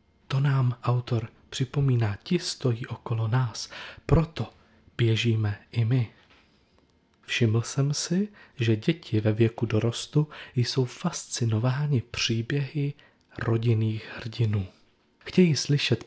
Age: 40-59